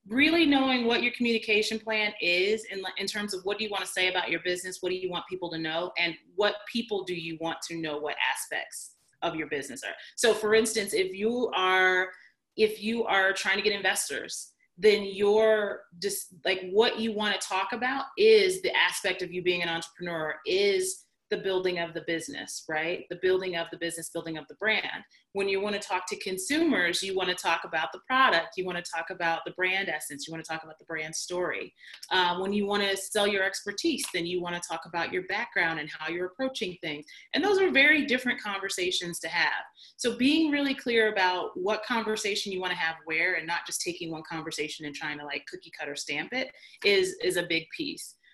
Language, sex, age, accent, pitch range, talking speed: English, female, 30-49, American, 175-245 Hz, 220 wpm